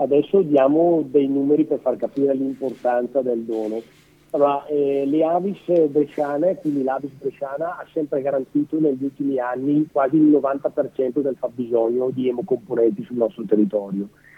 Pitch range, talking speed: 125-150 Hz, 140 wpm